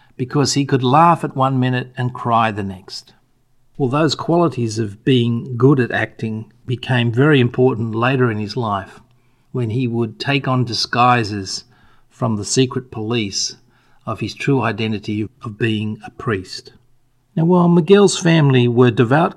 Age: 50-69